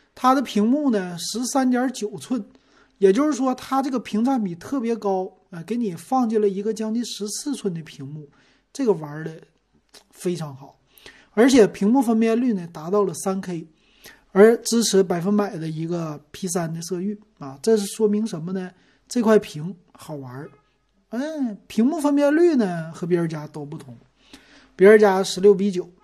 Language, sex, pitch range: Chinese, male, 165-215 Hz